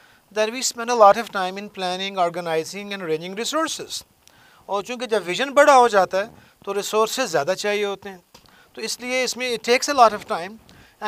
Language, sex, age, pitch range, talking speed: Arabic, male, 50-69, 190-235 Hz, 170 wpm